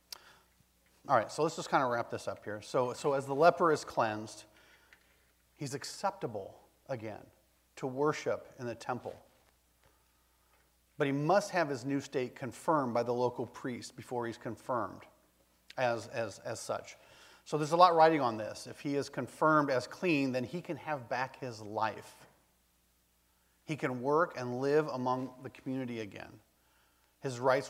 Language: English